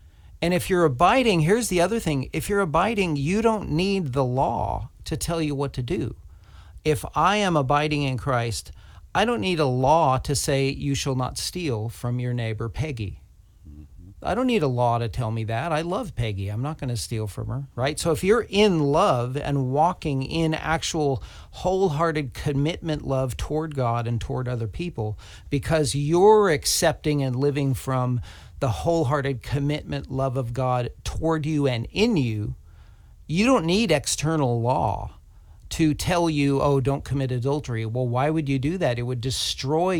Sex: male